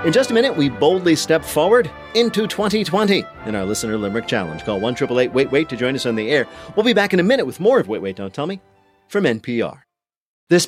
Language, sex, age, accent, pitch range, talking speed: English, male, 40-59, American, 110-165 Hz, 225 wpm